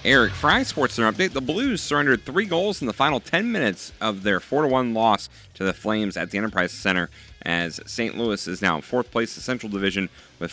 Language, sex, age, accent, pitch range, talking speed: English, male, 30-49, American, 95-120 Hz, 215 wpm